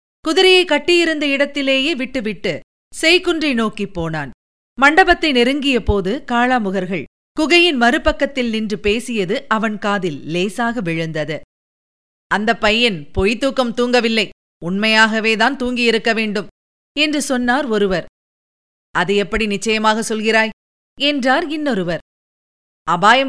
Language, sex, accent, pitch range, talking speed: Tamil, female, native, 215-265 Hz, 95 wpm